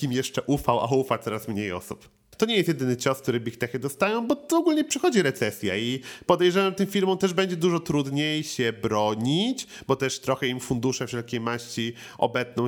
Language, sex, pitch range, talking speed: Polish, male, 120-155 Hz, 190 wpm